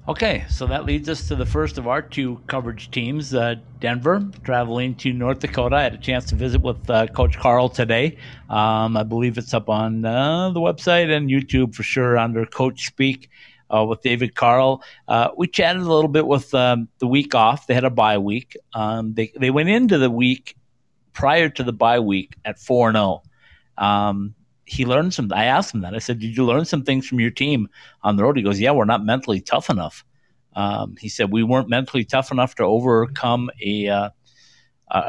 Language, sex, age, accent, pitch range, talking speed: English, male, 50-69, American, 110-135 Hz, 210 wpm